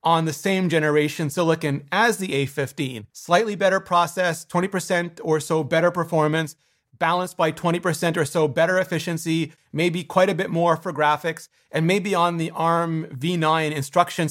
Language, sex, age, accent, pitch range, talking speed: English, male, 30-49, American, 150-180 Hz, 155 wpm